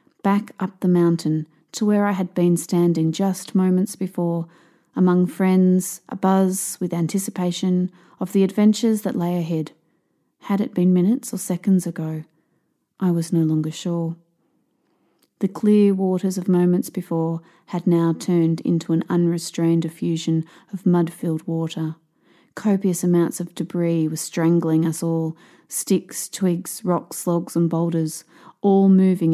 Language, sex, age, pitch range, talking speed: English, female, 30-49, 165-185 Hz, 145 wpm